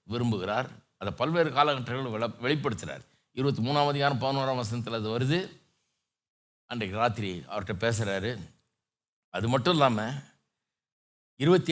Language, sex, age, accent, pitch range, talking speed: Tamil, male, 60-79, native, 110-145 Hz, 100 wpm